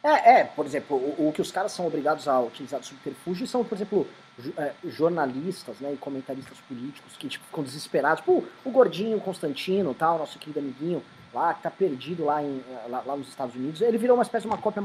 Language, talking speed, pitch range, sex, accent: Portuguese, 220 wpm, 165-245 Hz, male, Brazilian